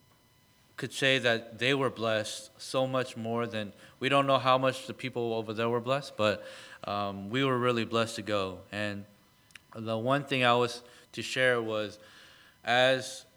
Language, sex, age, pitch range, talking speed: English, male, 30-49, 110-130 Hz, 175 wpm